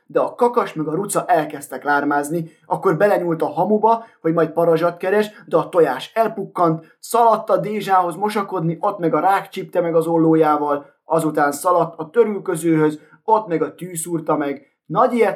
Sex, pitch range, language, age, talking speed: male, 160-215 Hz, Hungarian, 20-39, 155 wpm